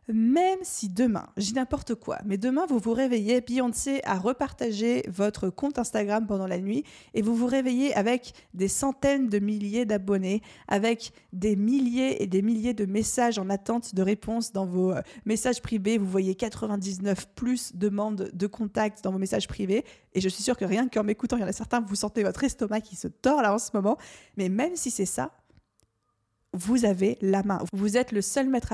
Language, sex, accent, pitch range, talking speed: French, female, French, 200-245 Hz, 200 wpm